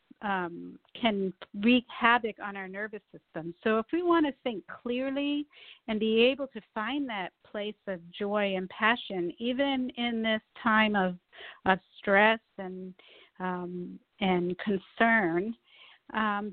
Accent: American